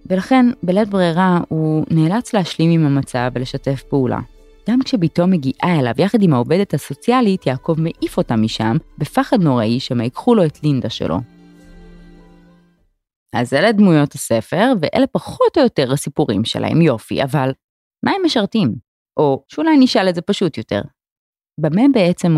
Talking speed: 145 wpm